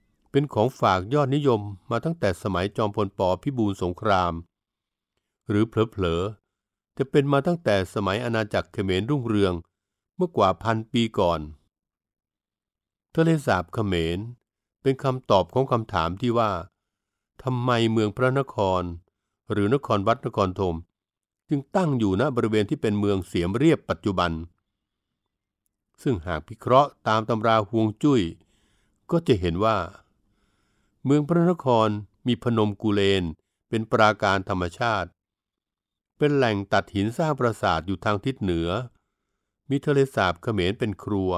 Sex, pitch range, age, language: male, 95-120 Hz, 60-79, Thai